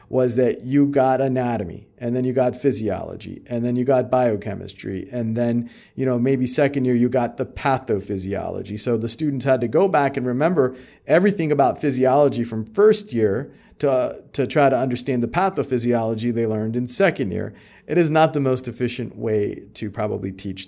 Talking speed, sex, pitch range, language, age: 185 wpm, male, 115-140 Hz, English, 40-59